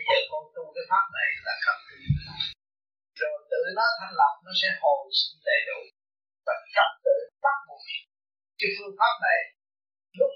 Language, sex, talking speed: Vietnamese, male, 175 wpm